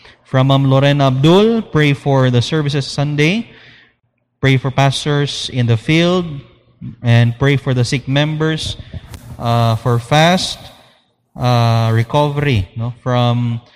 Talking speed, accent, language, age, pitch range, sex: 120 wpm, Filipino, English, 20-39, 120-145 Hz, male